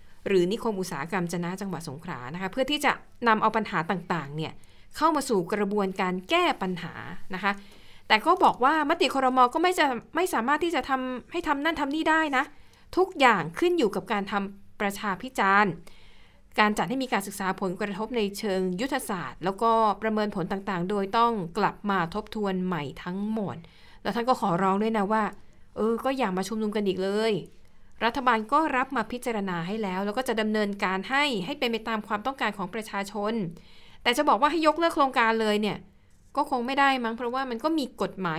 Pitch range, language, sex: 190-250 Hz, Thai, female